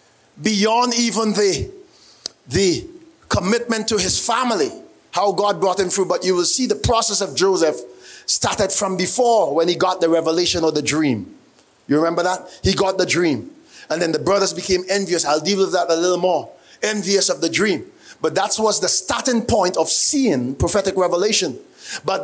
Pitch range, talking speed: 170-220 Hz, 180 wpm